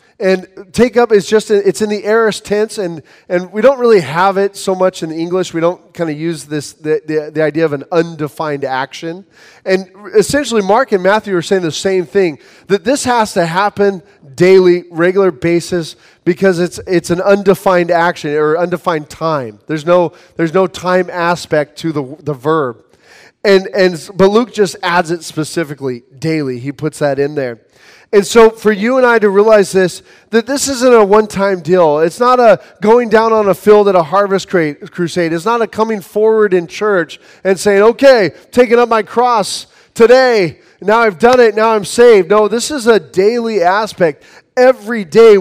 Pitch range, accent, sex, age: 165-210 Hz, American, male, 20-39